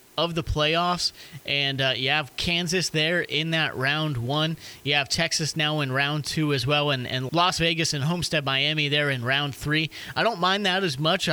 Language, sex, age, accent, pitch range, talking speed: English, male, 30-49, American, 145-170 Hz, 205 wpm